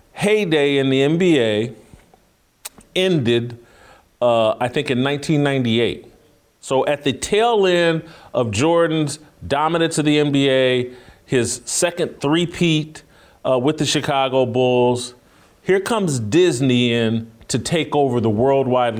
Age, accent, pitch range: 40-59, American, 125-165 Hz